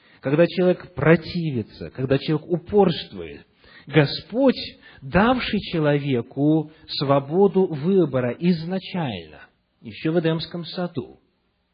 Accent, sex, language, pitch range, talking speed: native, male, Russian, 135-190 Hz, 80 wpm